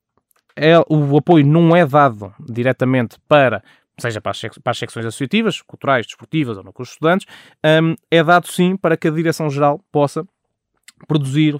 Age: 20-39